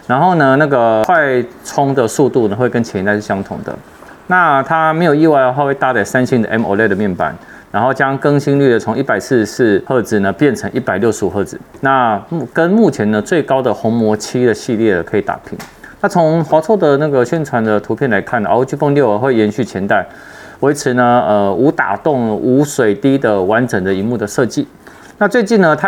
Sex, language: male, Chinese